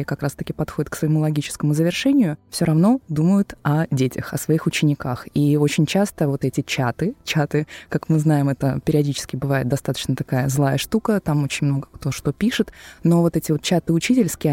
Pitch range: 150-180 Hz